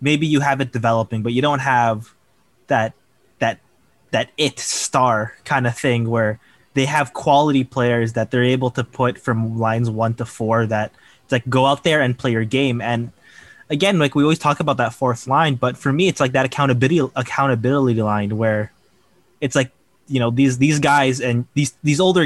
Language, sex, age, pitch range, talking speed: English, male, 20-39, 115-140 Hz, 195 wpm